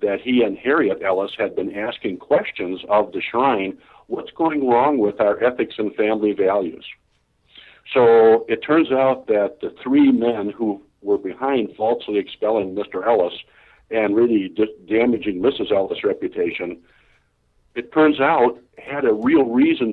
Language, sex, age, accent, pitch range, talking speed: English, male, 50-69, American, 110-165 Hz, 150 wpm